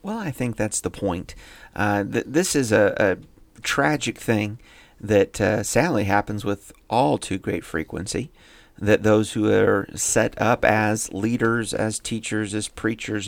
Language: English